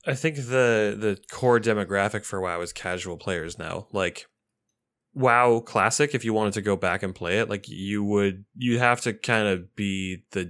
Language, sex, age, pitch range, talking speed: English, male, 20-39, 90-115 Hz, 195 wpm